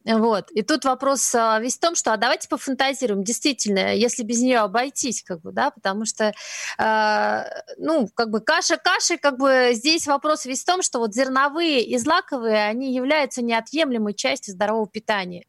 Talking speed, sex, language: 170 wpm, female, Russian